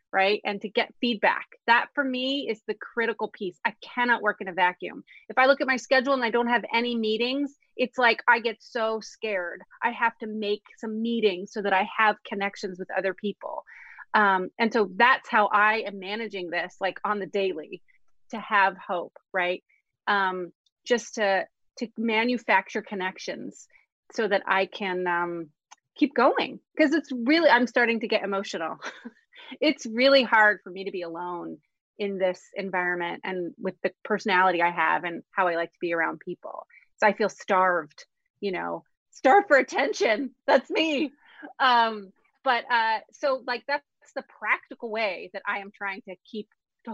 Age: 30-49